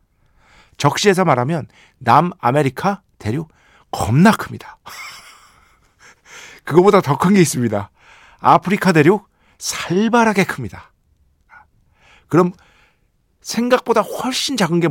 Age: 50-69